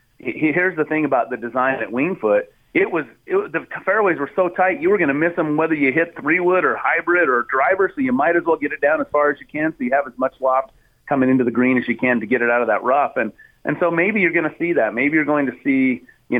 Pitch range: 115-155 Hz